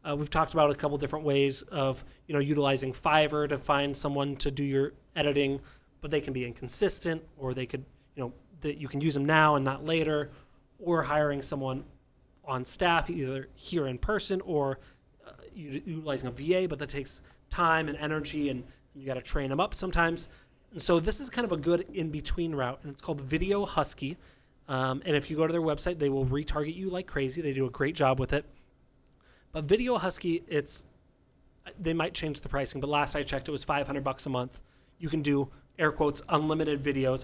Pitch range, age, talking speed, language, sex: 140-165 Hz, 30-49, 210 wpm, English, male